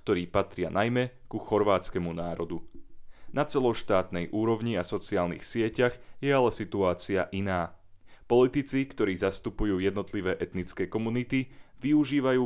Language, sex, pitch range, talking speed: Slovak, male, 90-120 Hz, 110 wpm